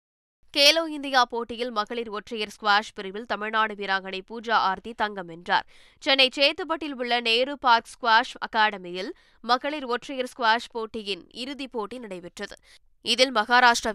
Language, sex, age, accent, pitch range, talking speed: Tamil, female, 20-39, native, 200-255 Hz, 125 wpm